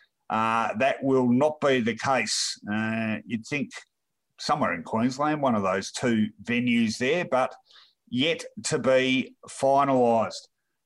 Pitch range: 120-160 Hz